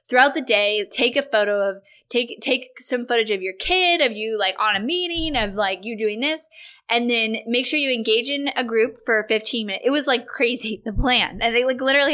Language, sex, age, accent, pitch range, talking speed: English, female, 10-29, American, 215-280 Hz, 230 wpm